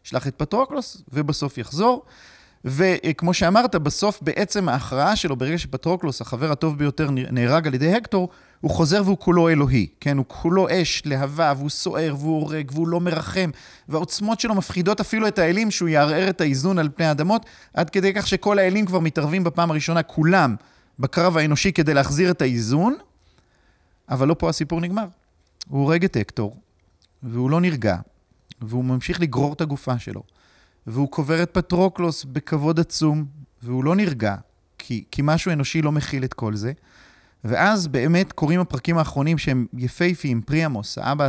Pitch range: 120-170 Hz